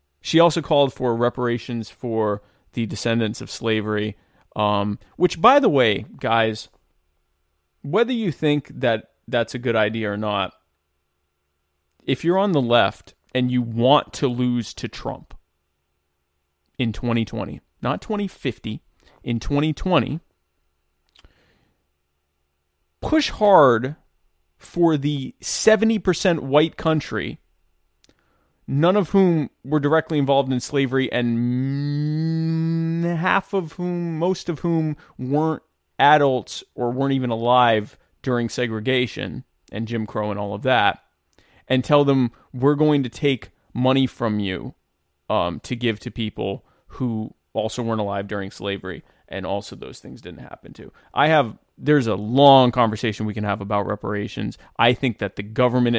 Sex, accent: male, American